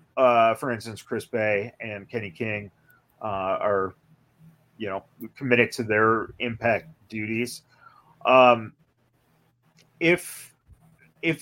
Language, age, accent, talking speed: English, 30-49, American, 105 wpm